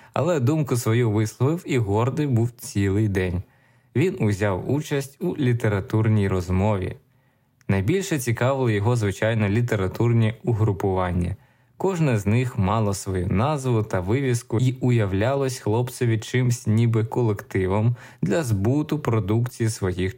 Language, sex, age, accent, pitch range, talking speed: Ukrainian, male, 20-39, native, 105-130 Hz, 115 wpm